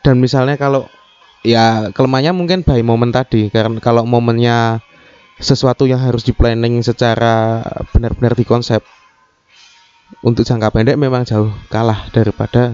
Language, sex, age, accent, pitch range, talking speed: Indonesian, male, 20-39, native, 115-145 Hz, 125 wpm